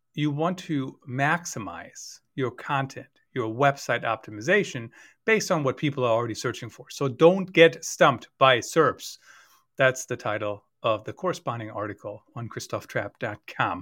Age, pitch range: 40-59, 125-175 Hz